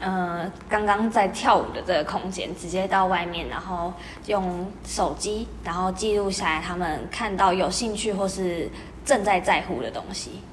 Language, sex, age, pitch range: Chinese, female, 20-39, 180-210 Hz